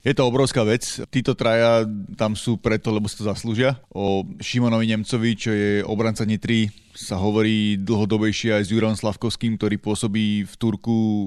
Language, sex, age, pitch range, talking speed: Slovak, male, 20-39, 105-115 Hz, 165 wpm